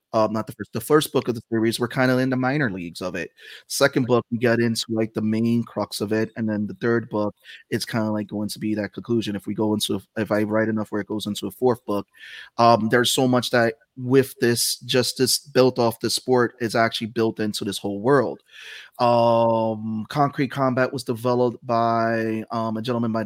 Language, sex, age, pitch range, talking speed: English, male, 30-49, 105-120 Hz, 230 wpm